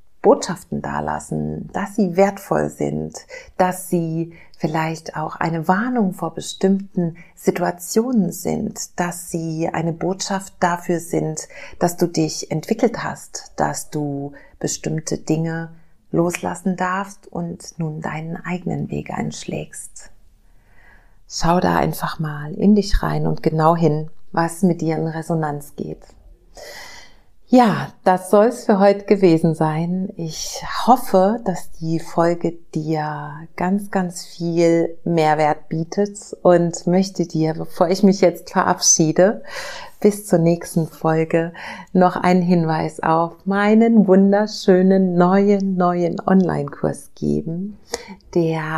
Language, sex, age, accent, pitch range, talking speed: German, female, 40-59, German, 160-195 Hz, 120 wpm